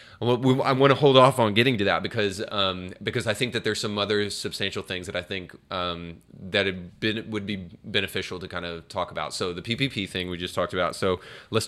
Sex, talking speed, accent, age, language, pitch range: male, 230 wpm, American, 20-39, English, 95-120 Hz